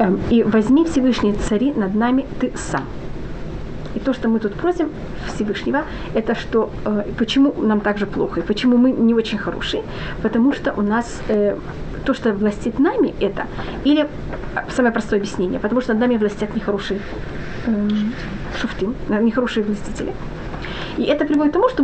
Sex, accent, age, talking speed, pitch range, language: female, native, 30-49, 155 wpm, 220-280 Hz, Russian